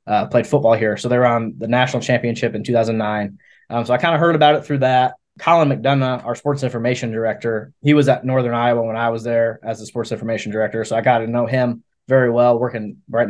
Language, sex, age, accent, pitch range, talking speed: English, male, 20-39, American, 110-125 Hz, 235 wpm